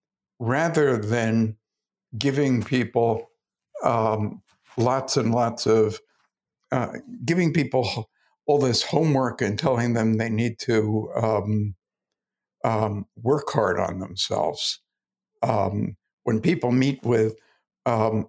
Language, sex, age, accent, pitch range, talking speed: English, male, 60-79, American, 110-140 Hz, 110 wpm